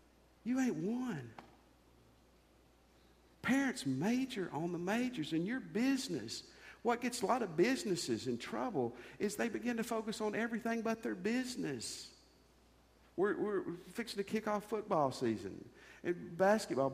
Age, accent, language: 50-69, American, English